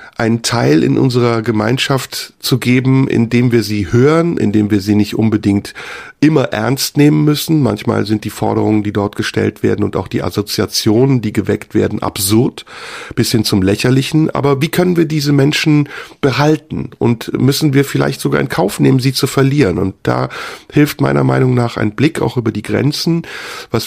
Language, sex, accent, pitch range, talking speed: German, male, German, 110-140 Hz, 180 wpm